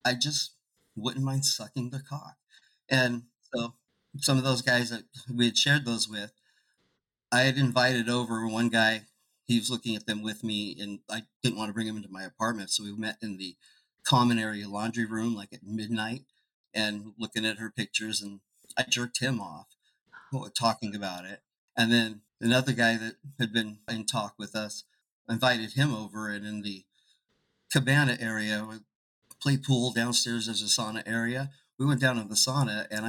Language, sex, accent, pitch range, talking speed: English, male, American, 105-125 Hz, 180 wpm